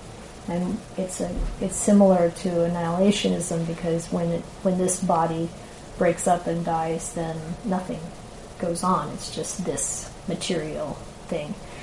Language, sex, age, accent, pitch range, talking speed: English, female, 30-49, American, 170-195 Hz, 130 wpm